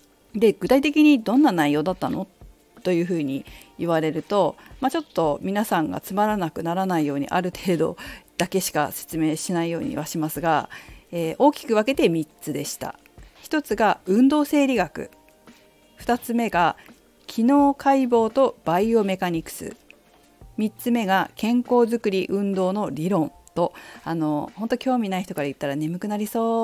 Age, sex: 40-59, female